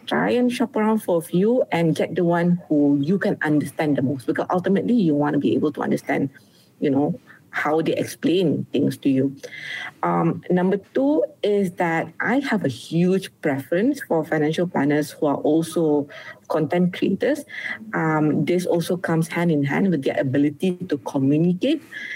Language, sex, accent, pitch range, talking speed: English, female, Malaysian, 150-190 Hz, 175 wpm